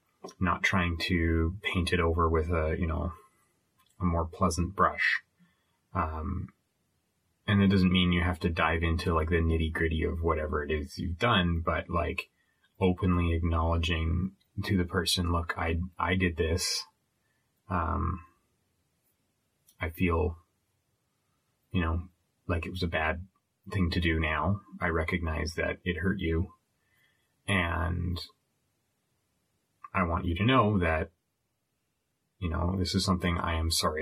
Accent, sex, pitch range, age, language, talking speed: American, male, 80-95 Hz, 30-49, English, 140 wpm